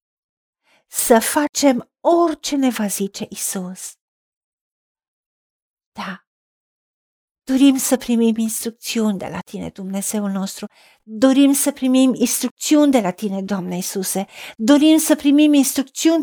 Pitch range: 210-265 Hz